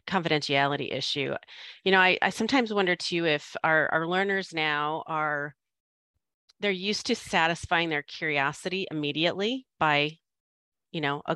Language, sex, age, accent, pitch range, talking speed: English, female, 30-49, American, 140-165 Hz, 135 wpm